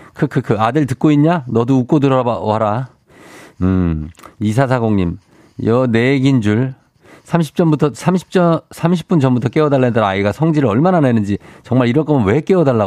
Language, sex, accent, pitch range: Korean, male, native, 110-155 Hz